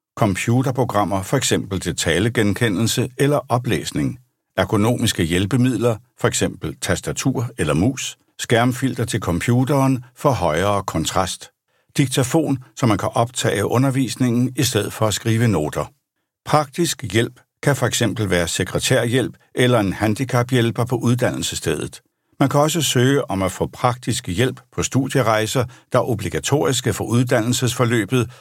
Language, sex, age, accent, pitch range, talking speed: Danish, male, 60-79, native, 105-135 Hz, 120 wpm